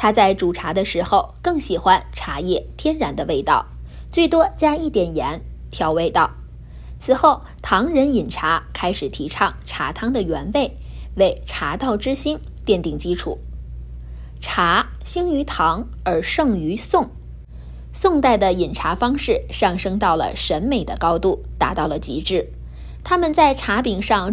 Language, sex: Chinese, female